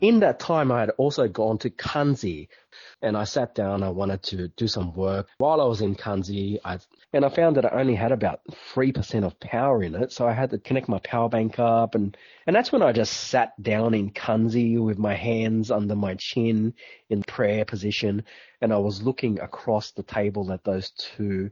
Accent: Australian